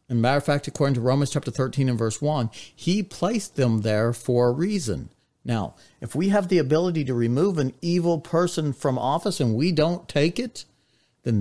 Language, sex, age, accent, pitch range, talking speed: English, male, 50-69, American, 120-165 Hz, 200 wpm